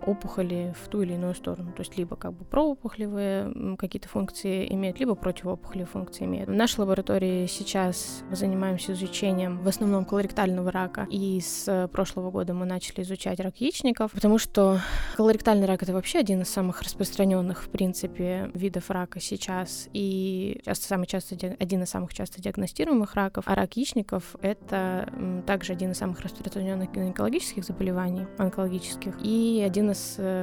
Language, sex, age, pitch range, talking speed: Russian, female, 20-39, 185-205 Hz, 155 wpm